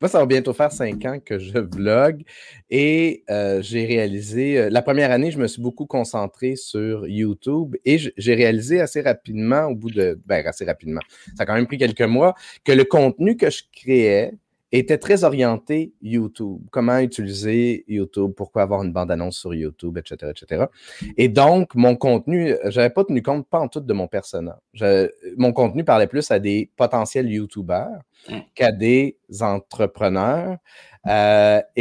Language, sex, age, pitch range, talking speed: French, male, 30-49, 105-145 Hz, 170 wpm